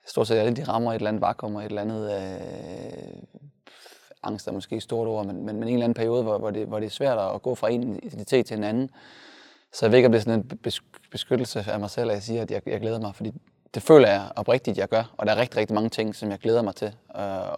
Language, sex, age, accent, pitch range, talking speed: Danish, male, 20-39, native, 105-115 Hz, 285 wpm